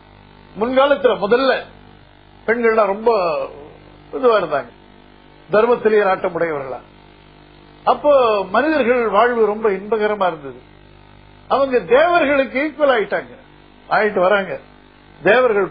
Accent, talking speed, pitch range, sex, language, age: native, 75 wpm, 150-220 Hz, male, Tamil, 50-69